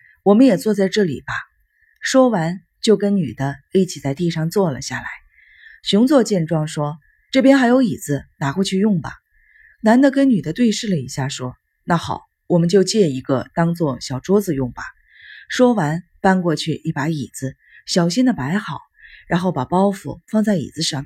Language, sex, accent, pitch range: Chinese, female, native, 150-220 Hz